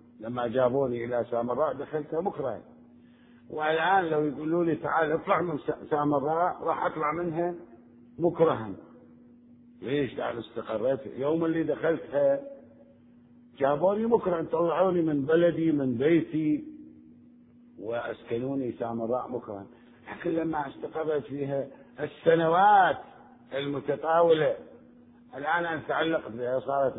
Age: 50-69